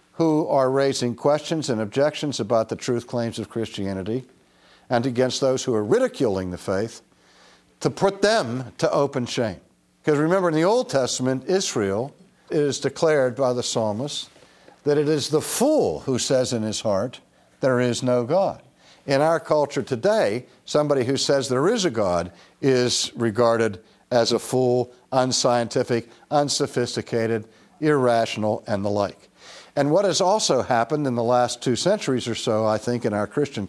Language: English